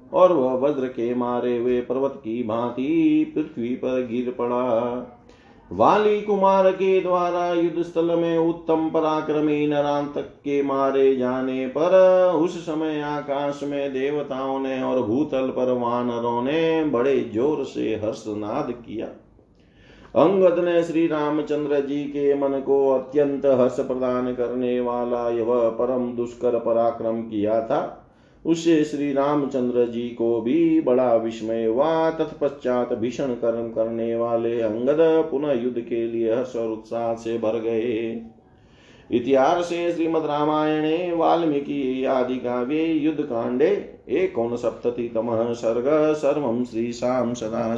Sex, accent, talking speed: male, native, 125 wpm